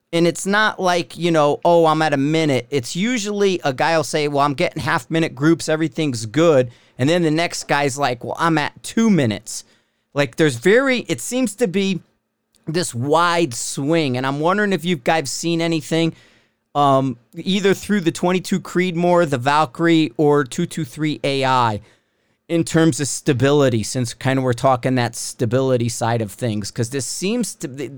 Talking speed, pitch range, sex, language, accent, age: 180 wpm, 130-165 Hz, male, English, American, 40-59